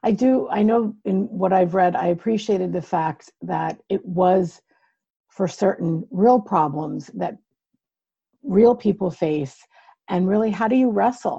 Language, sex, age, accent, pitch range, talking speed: English, female, 50-69, American, 175-220 Hz, 155 wpm